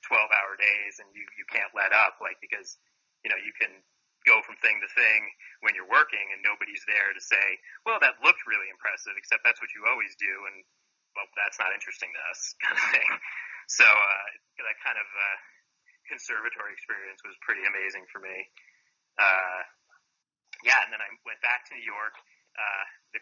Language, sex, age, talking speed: English, male, 30-49, 190 wpm